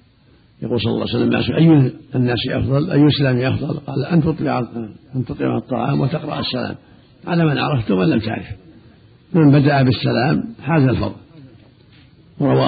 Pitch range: 115-135 Hz